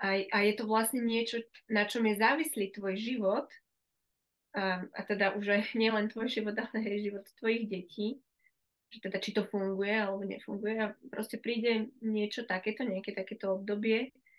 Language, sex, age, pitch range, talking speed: Slovak, female, 20-39, 195-230 Hz, 170 wpm